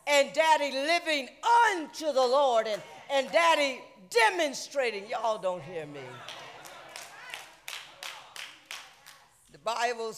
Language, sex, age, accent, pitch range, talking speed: English, female, 50-69, American, 150-245 Hz, 95 wpm